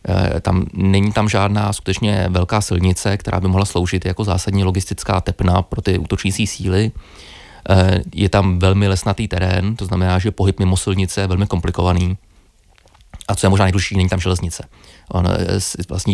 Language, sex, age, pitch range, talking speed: Czech, male, 20-39, 90-100 Hz, 160 wpm